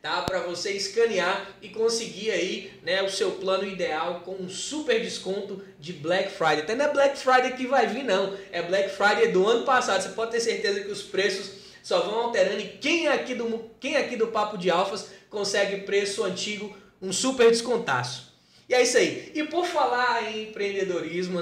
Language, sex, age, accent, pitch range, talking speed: Portuguese, male, 20-39, Brazilian, 180-230 Hz, 195 wpm